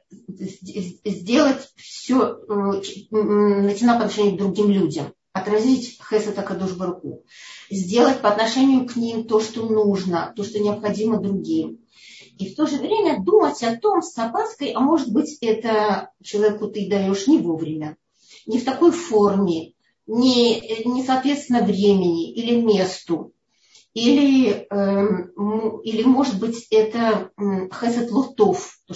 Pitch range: 195-255 Hz